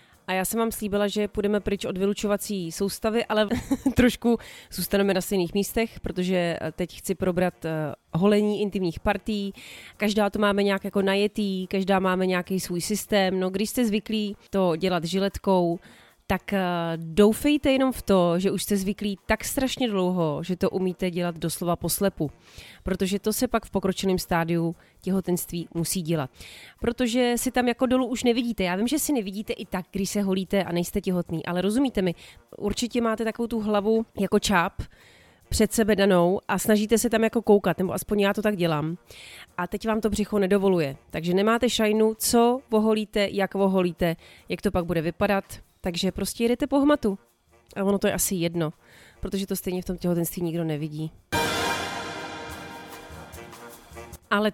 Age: 30-49